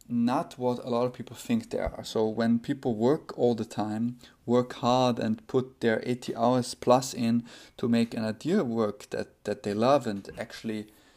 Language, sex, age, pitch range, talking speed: English, male, 20-39, 105-125 Hz, 195 wpm